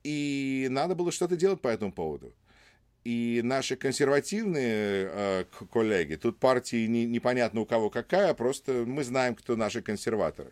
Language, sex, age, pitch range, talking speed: English, male, 40-59, 110-140 Hz, 145 wpm